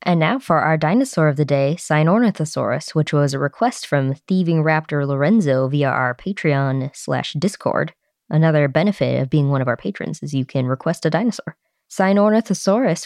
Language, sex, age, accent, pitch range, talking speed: English, female, 20-39, American, 145-185 Hz, 170 wpm